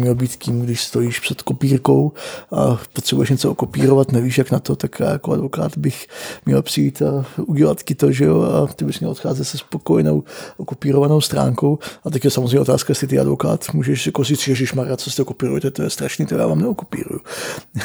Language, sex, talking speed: Czech, male, 200 wpm